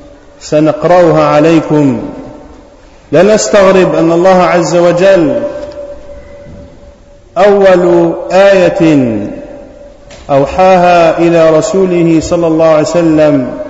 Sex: male